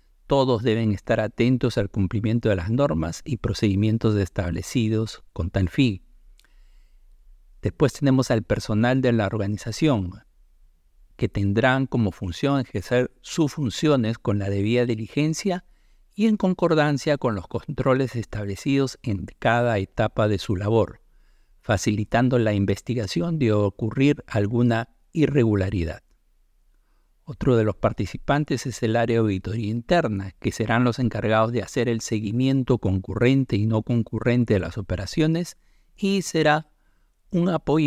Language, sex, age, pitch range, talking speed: Spanish, male, 50-69, 100-130 Hz, 130 wpm